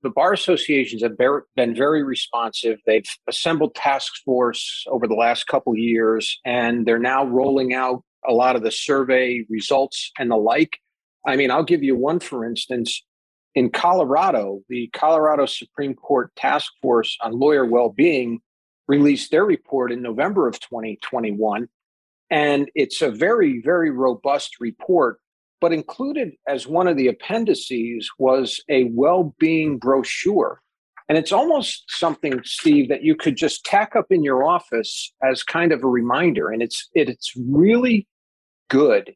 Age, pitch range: 40-59, 125-155 Hz